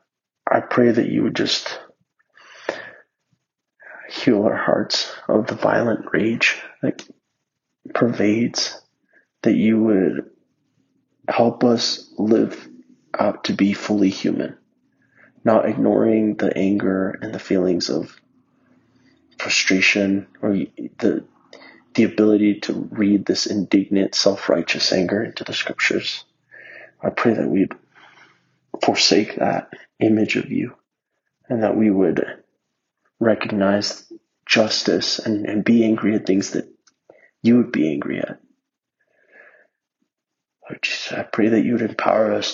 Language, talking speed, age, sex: English, 115 wpm, 30-49, male